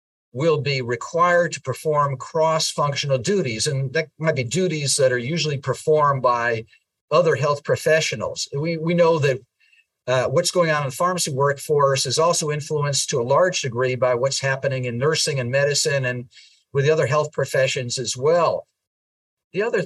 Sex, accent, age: male, American, 50-69